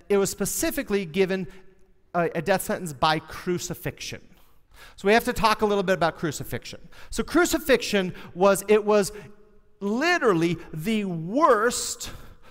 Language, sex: English, male